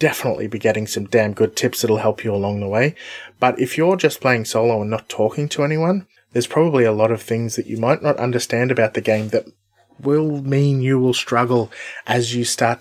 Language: English